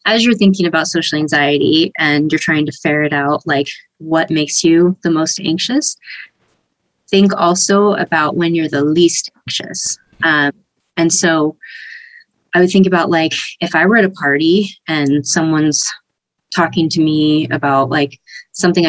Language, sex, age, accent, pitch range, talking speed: English, female, 20-39, American, 150-185 Hz, 155 wpm